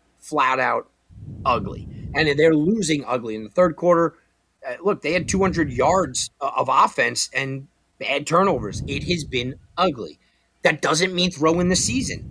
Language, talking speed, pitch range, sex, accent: English, 160 wpm, 130-195 Hz, male, American